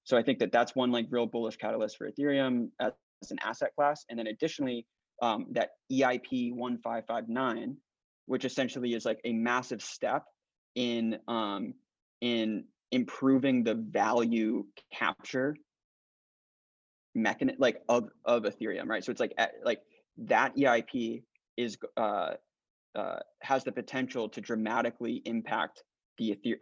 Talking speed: 145 wpm